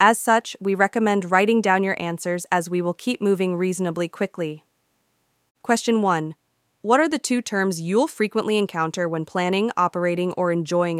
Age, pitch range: 20-39, 160-200 Hz